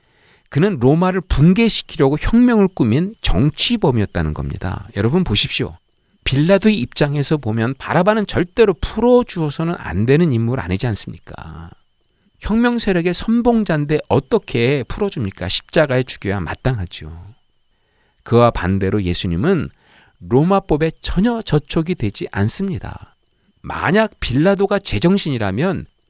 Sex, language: male, Korean